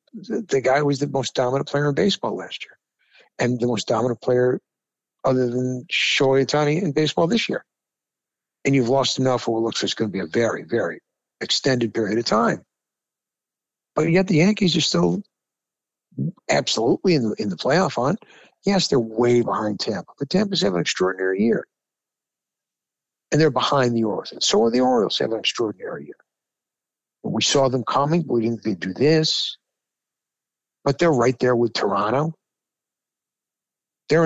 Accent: American